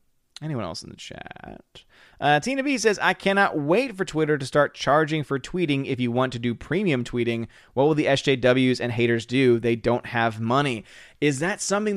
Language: English